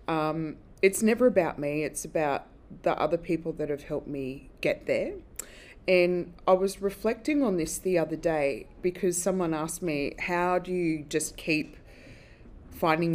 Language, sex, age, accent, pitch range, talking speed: English, female, 20-39, Australian, 145-175 Hz, 160 wpm